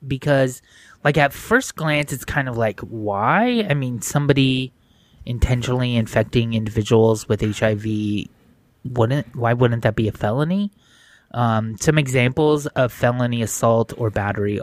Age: 20-39